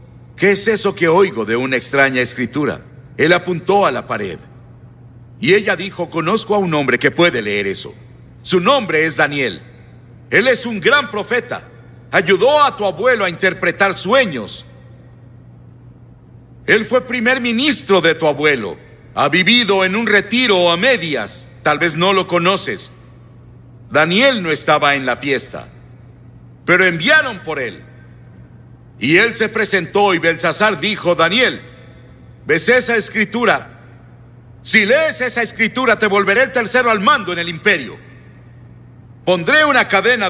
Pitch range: 125-200 Hz